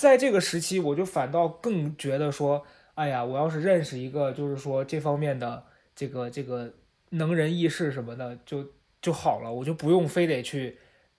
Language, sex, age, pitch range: Chinese, male, 20-39, 135-170 Hz